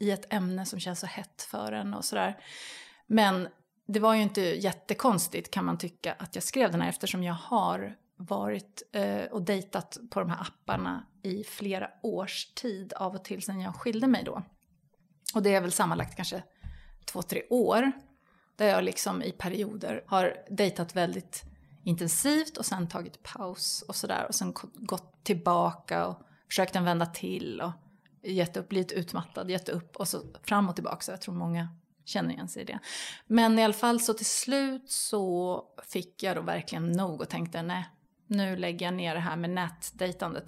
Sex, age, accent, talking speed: female, 30-49, native, 185 wpm